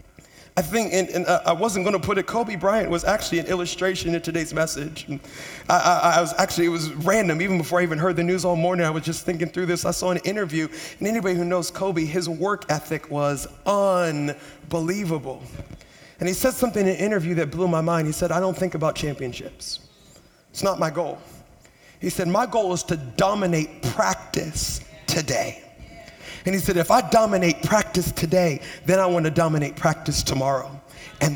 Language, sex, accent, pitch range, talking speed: English, male, American, 160-195 Hz, 195 wpm